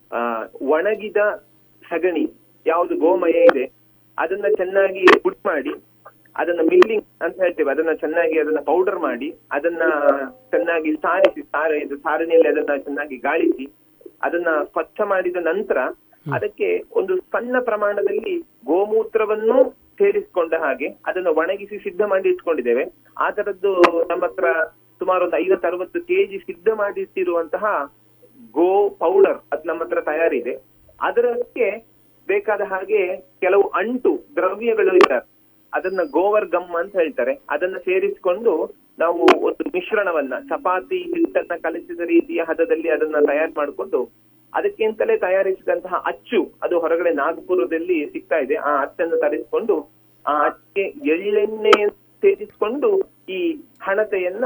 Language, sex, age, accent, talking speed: Kannada, male, 30-49, native, 110 wpm